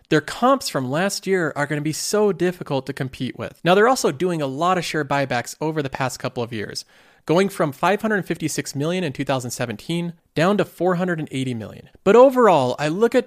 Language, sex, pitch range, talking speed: English, male, 140-190 Hz, 195 wpm